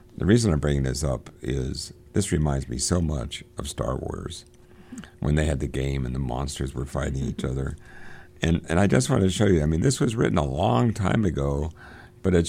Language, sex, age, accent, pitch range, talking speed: English, male, 60-79, American, 70-90 Hz, 220 wpm